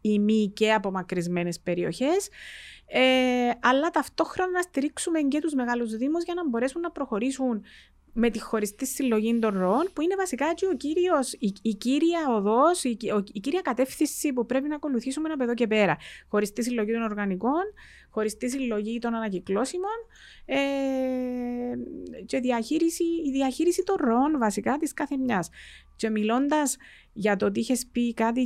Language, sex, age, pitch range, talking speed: Greek, female, 30-49, 215-285 Hz, 150 wpm